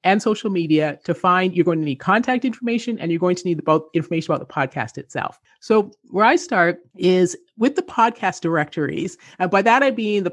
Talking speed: 215 wpm